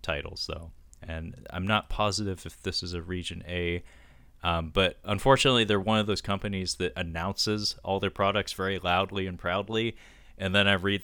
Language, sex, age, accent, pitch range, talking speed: English, male, 30-49, American, 80-100 Hz, 180 wpm